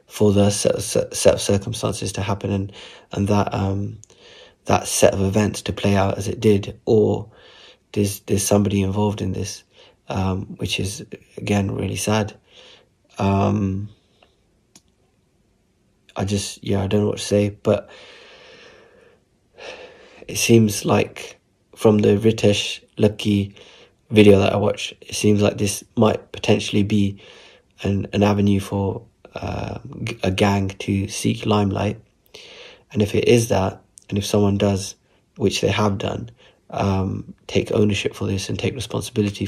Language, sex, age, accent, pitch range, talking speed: English, male, 20-39, British, 100-105 Hz, 145 wpm